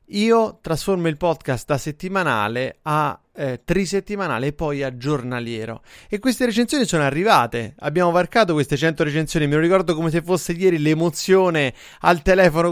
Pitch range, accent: 145-190 Hz, native